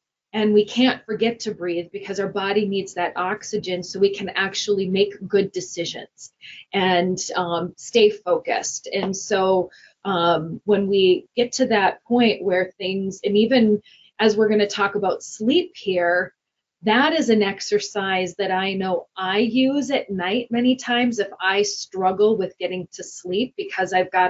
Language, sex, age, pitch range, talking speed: English, female, 30-49, 185-230 Hz, 165 wpm